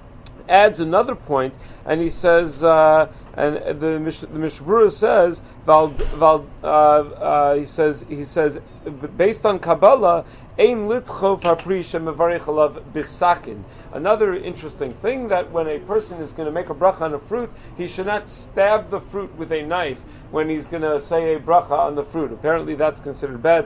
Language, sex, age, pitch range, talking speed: English, male, 40-59, 140-185 Hz, 160 wpm